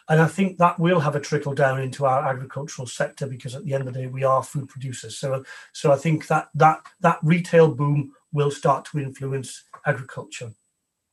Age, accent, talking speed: 40-59, British, 205 wpm